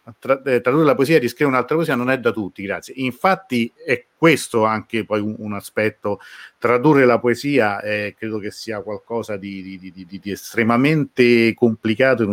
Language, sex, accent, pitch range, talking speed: Italian, male, native, 100-120 Hz, 170 wpm